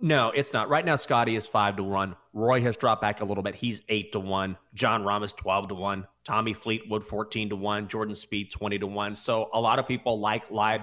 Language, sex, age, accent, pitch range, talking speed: English, male, 30-49, American, 110-145 Hz, 240 wpm